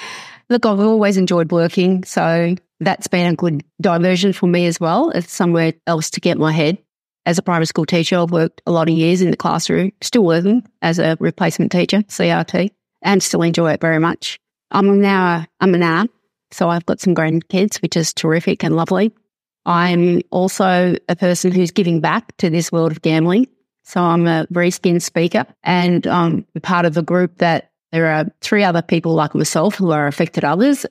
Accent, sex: Australian, female